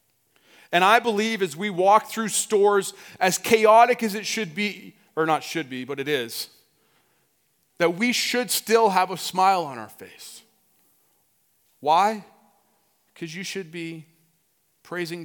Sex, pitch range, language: male, 150-195 Hz, English